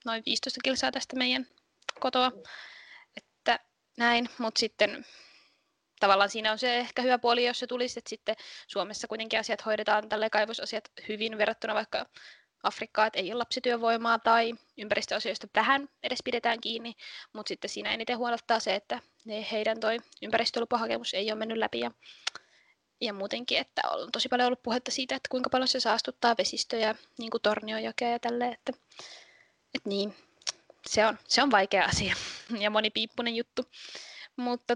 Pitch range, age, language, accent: 220-260 Hz, 20-39, Finnish, native